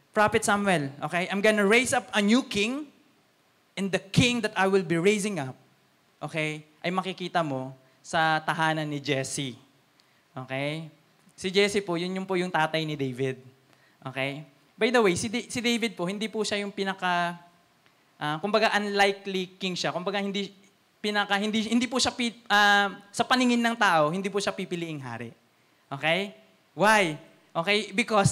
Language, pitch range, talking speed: Filipino, 150-205 Hz, 160 wpm